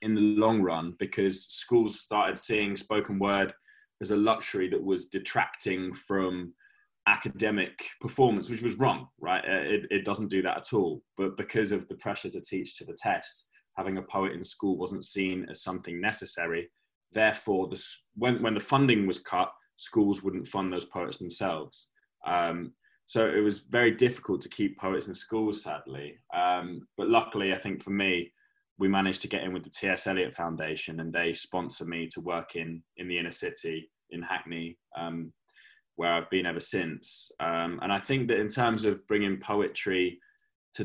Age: 20-39